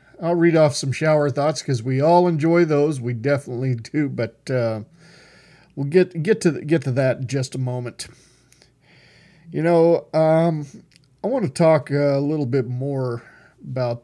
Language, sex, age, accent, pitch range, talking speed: English, male, 40-59, American, 130-155 Hz, 170 wpm